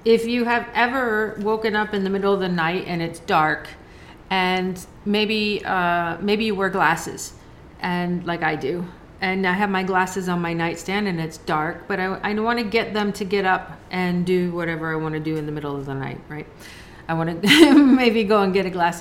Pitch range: 180-225 Hz